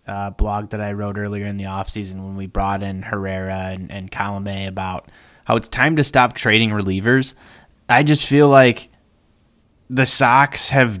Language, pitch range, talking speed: English, 100-125 Hz, 175 wpm